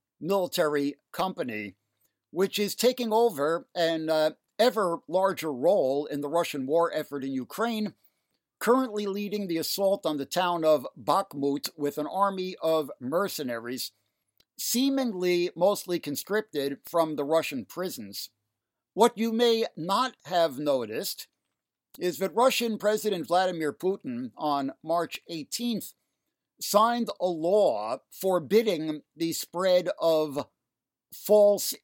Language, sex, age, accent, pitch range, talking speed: English, male, 60-79, American, 150-200 Hz, 115 wpm